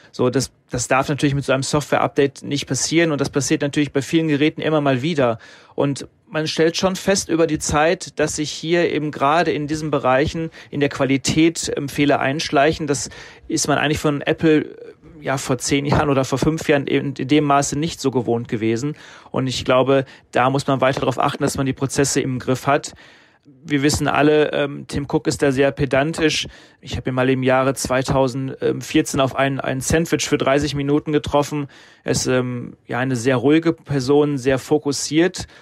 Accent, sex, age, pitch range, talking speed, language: German, male, 30-49, 130-150 Hz, 190 wpm, English